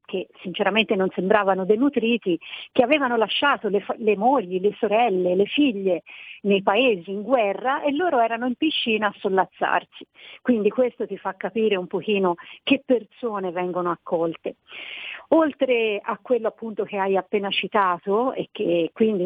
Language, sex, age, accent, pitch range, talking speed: Italian, female, 50-69, native, 190-240 Hz, 150 wpm